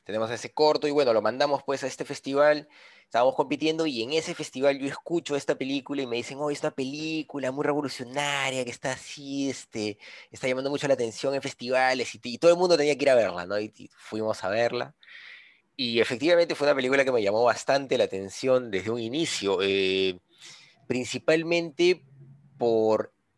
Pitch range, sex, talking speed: 115-150 Hz, male, 185 wpm